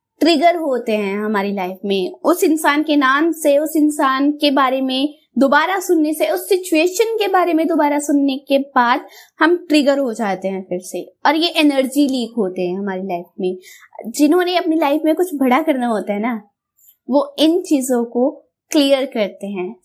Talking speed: 185 wpm